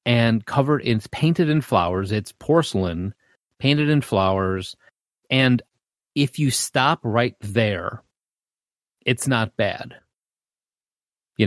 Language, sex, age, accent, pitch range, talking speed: English, male, 30-49, American, 100-130 Hz, 110 wpm